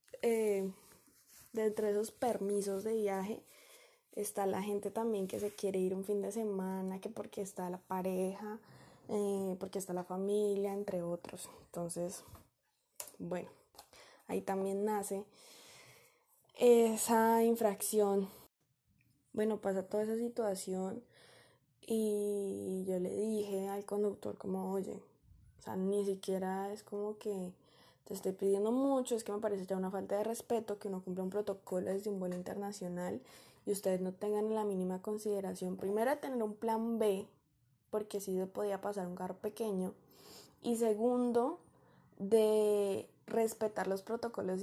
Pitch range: 185-215 Hz